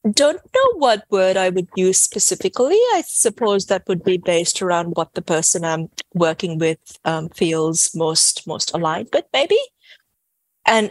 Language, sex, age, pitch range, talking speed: English, female, 30-49, 160-195 Hz, 160 wpm